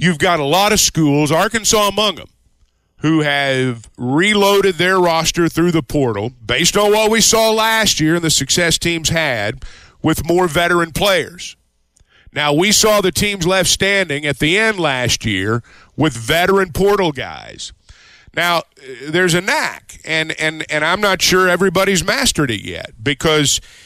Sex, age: male, 50-69